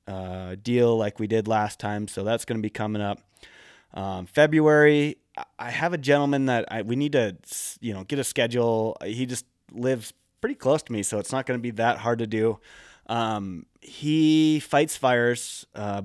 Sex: male